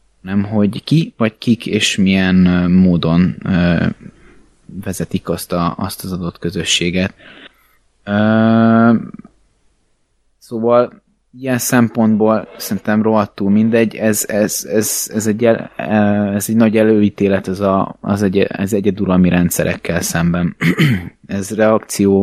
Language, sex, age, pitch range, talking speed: Hungarian, male, 20-39, 95-115 Hz, 120 wpm